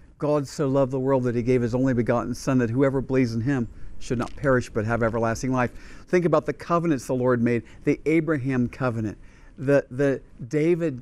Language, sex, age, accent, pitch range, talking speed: English, male, 50-69, American, 135-175 Hz, 200 wpm